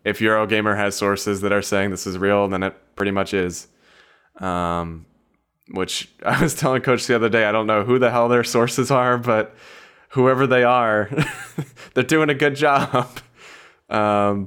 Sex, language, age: male, English, 20-39